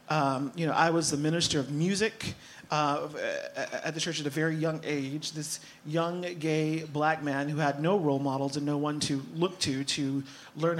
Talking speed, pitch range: 200 wpm, 135-170 Hz